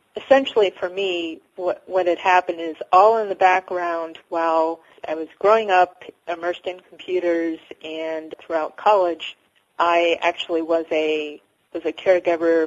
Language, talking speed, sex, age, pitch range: English, 140 wpm, female, 40-59, 160-180 Hz